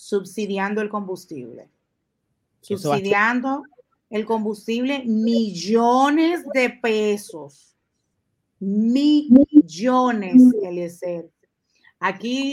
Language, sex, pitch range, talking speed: Spanish, female, 190-245 Hz, 55 wpm